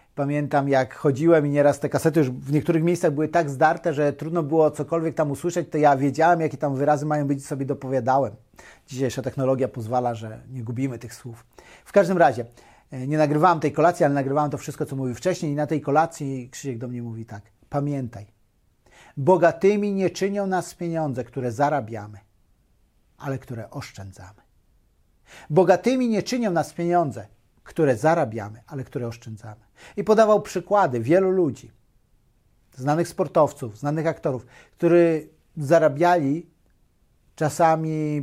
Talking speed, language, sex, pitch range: 150 wpm, Polish, male, 120-165 Hz